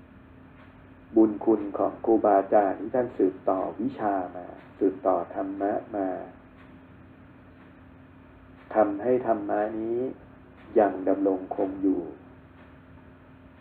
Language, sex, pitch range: Thai, male, 90-105 Hz